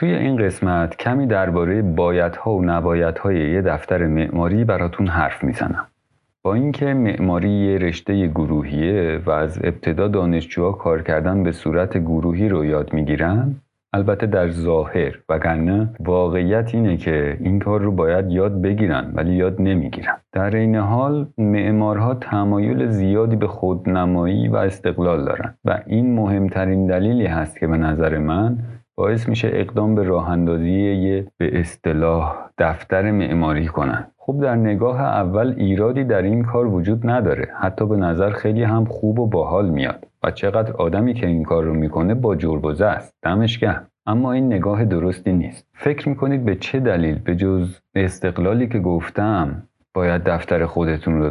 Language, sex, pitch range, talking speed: Persian, male, 85-110 Hz, 150 wpm